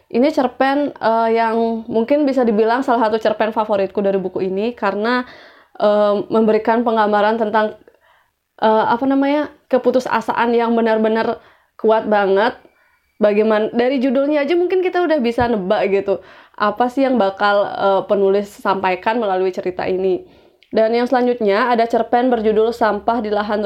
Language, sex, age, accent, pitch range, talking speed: Indonesian, female, 20-39, native, 210-245 Hz, 140 wpm